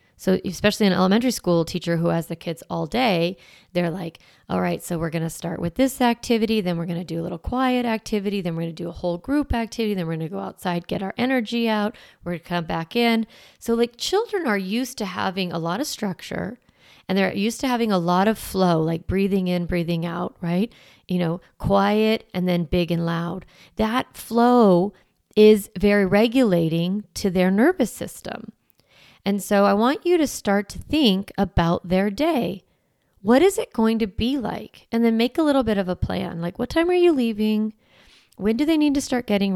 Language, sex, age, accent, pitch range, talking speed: English, female, 30-49, American, 175-225 Hz, 215 wpm